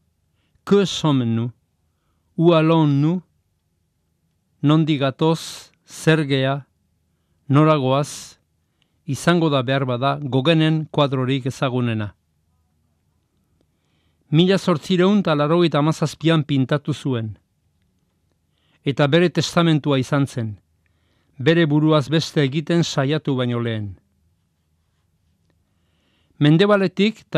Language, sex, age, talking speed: Spanish, male, 50-69, 75 wpm